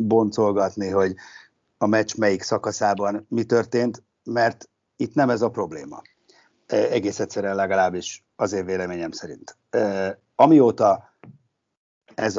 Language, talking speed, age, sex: Hungarian, 105 wpm, 60-79, male